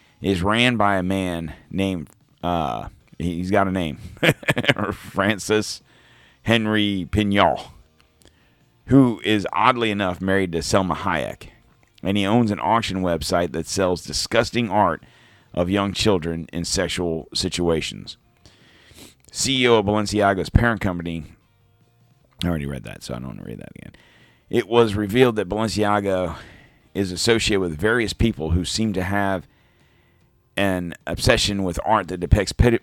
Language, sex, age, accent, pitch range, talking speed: English, male, 50-69, American, 85-110 Hz, 140 wpm